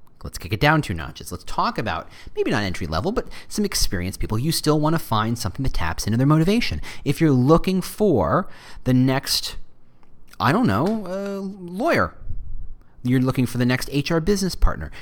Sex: male